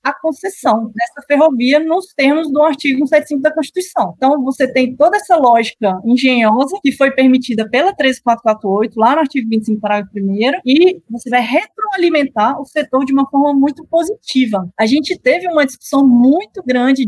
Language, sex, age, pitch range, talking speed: Portuguese, female, 20-39, 230-295 Hz, 165 wpm